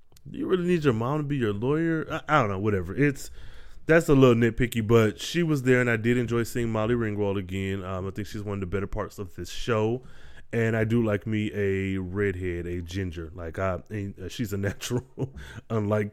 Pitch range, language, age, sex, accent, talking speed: 100-125 Hz, English, 20-39, male, American, 215 wpm